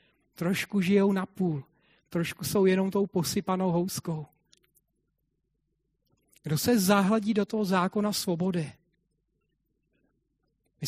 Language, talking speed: Czech, 100 wpm